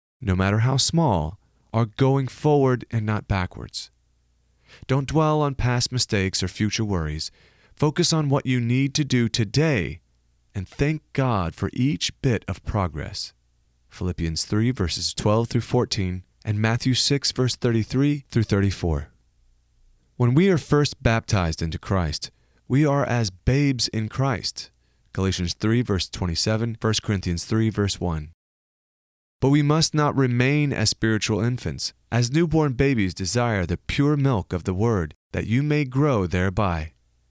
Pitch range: 90-135 Hz